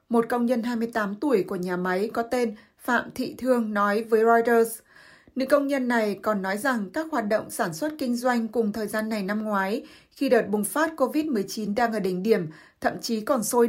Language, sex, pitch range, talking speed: Vietnamese, female, 210-255 Hz, 215 wpm